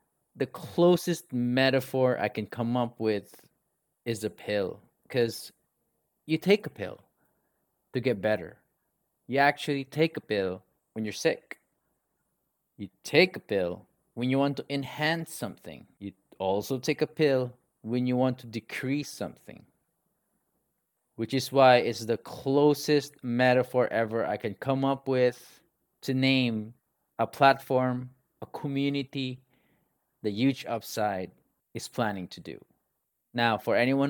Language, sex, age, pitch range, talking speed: English, male, 30-49, 110-135 Hz, 135 wpm